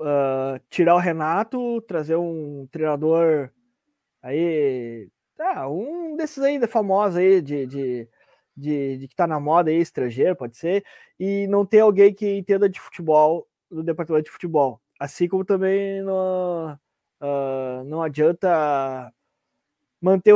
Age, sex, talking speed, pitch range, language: 20-39, male, 135 wpm, 150-195 Hz, Portuguese